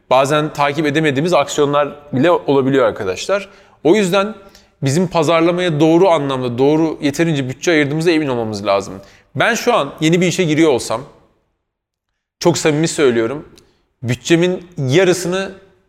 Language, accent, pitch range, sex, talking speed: Turkish, native, 125-170 Hz, male, 125 wpm